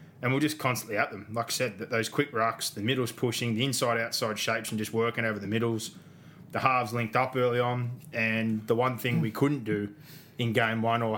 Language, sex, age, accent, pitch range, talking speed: English, male, 20-39, Australian, 110-125 Hz, 225 wpm